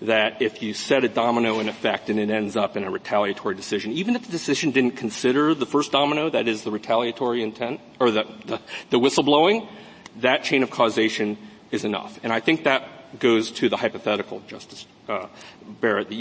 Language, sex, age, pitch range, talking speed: English, male, 40-59, 110-140 Hz, 195 wpm